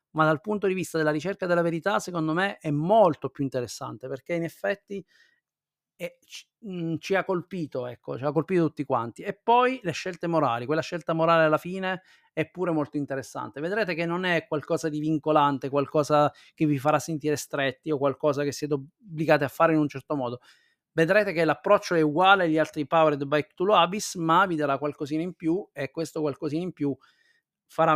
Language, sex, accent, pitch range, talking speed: Italian, male, native, 140-175 Hz, 195 wpm